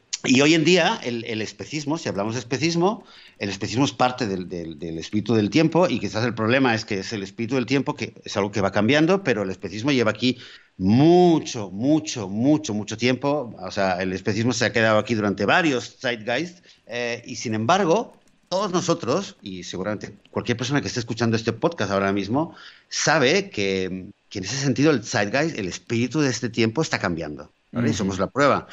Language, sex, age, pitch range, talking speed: Spanish, male, 50-69, 105-140 Hz, 200 wpm